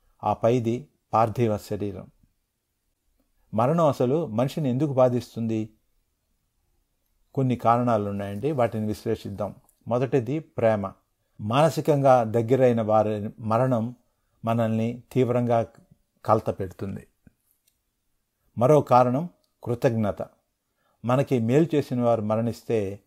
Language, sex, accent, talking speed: Telugu, male, native, 80 wpm